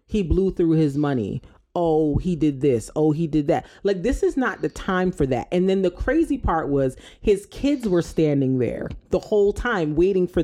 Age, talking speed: 30-49, 215 wpm